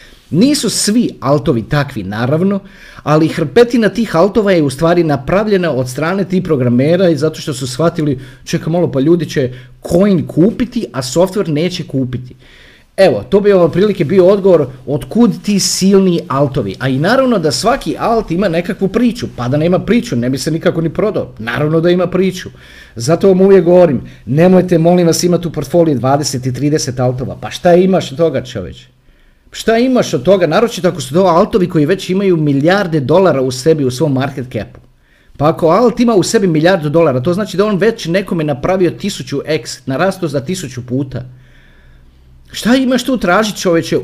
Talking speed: 180 wpm